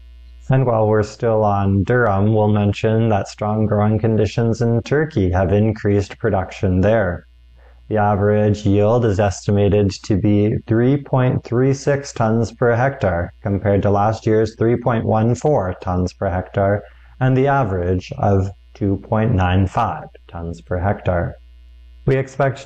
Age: 20-39